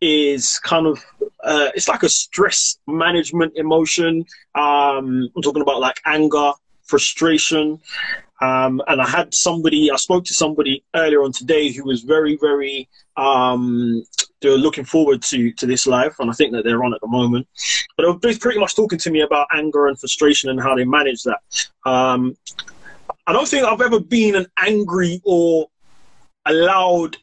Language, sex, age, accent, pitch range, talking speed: English, male, 20-39, British, 135-170 Hz, 170 wpm